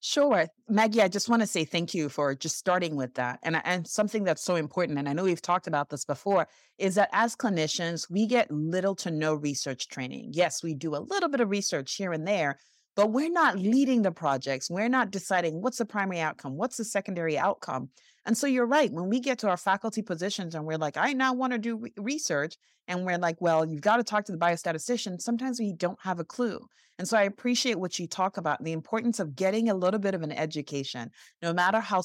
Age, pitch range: 30-49, 160-220 Hz